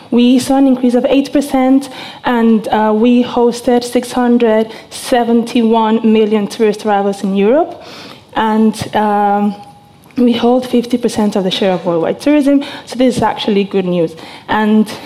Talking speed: 135 wpm